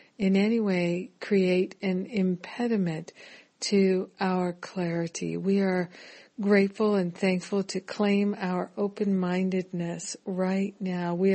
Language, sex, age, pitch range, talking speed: English, female, 60-79, 180-205 Hz, 110 wpm